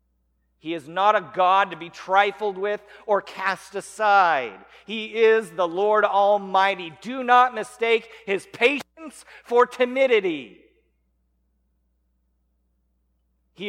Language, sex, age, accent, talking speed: English, male, 40-59, American, 110 wpm